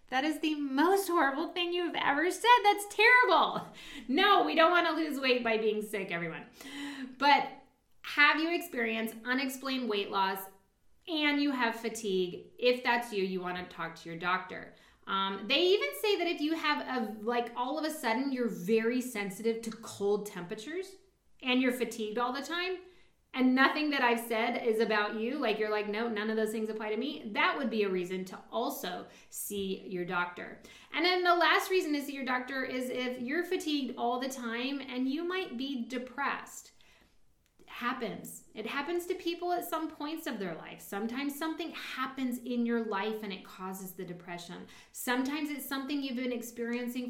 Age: 20-39